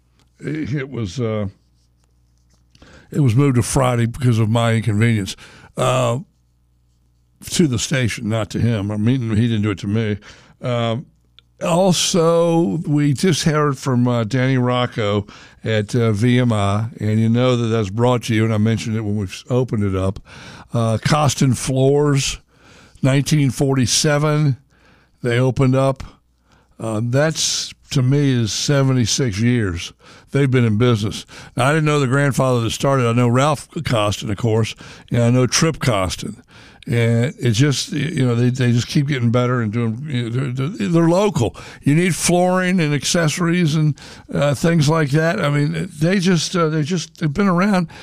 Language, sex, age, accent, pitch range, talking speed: English, male, 60-79, American, 115-150 Hz, 165 wpm